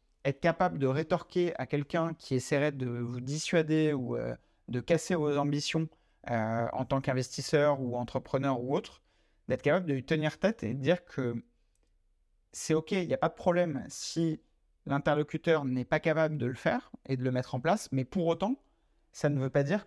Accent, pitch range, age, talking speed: French, 130-165 Hz, 30-49, 195 wpm